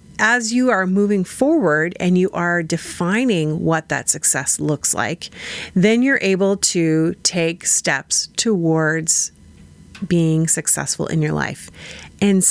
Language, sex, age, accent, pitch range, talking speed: English, female, 40-59, American, 160-210 Hz, 130 wpm